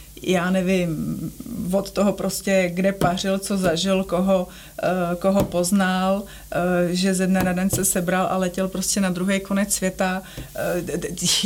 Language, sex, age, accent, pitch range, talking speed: Czech, female, 30-49, native, 175-200 Hz, 150 wpm